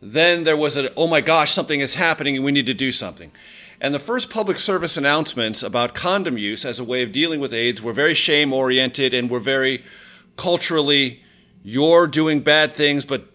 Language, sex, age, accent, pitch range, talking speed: English, male, 40-59, American, 135-185 Hz, 200 wpm